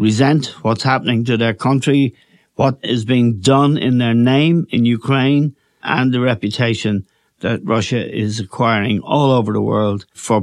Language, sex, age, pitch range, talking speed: English, male, 60-79, 115-145 Hz, 155 wpm